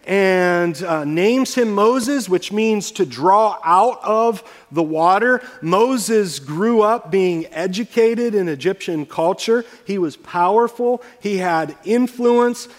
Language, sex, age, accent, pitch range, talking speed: English, male, 40-59, American, 160-205 Hz, 125 wpm